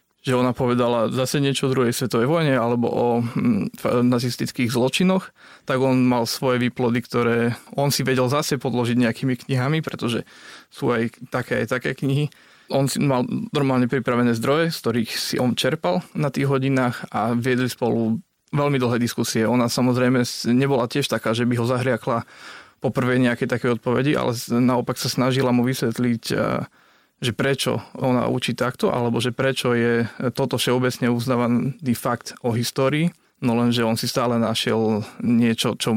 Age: 20-39